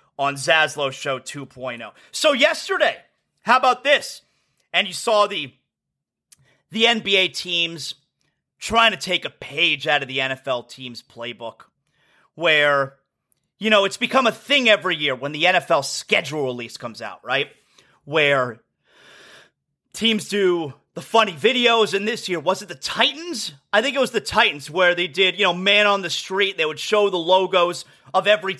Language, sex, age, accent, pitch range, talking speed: English, male, 30-49, American, 150-220 Hz, 165 wpm